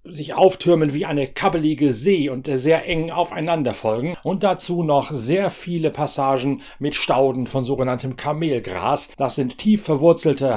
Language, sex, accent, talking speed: German, male, German, 150 wpm